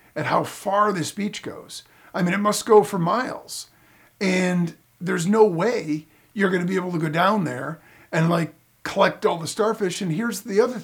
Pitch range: 150-195 Hz